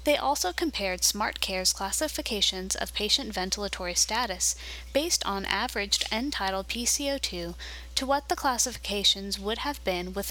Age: 20-39